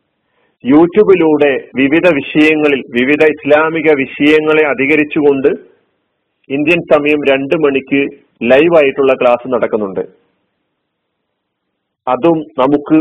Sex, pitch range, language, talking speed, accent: male, 145-180 Hz, Malayalam, 75 wpm, native